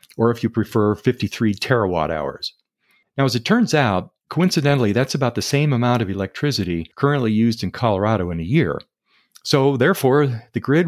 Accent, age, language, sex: American, 40-59, English, male